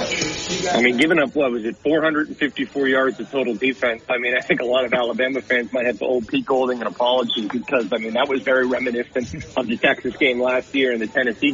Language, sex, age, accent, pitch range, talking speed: English, male, 30-49, American, 125-155 Hz, 235 wpm